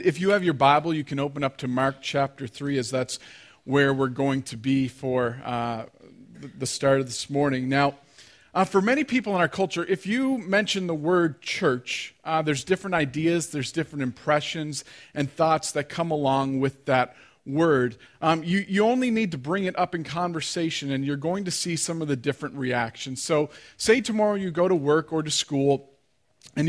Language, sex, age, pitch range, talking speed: English, male, 40-59, 135-170 Hz, 200 wpm